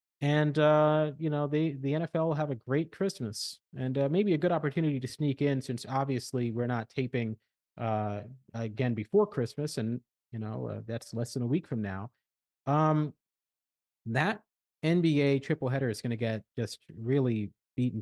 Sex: male